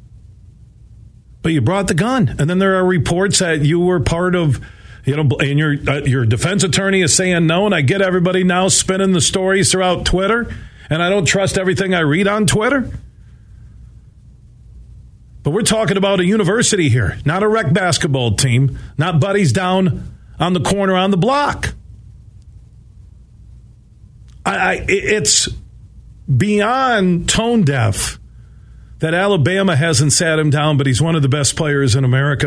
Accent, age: American, 40-59